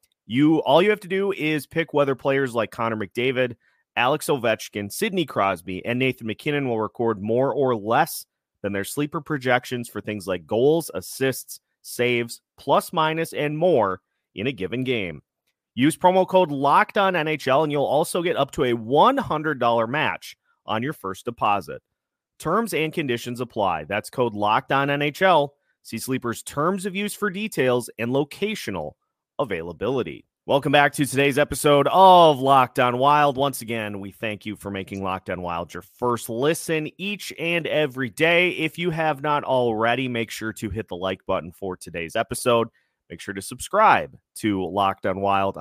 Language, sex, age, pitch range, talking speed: English, male, 30-49, 110-155 Hz, 165 wpm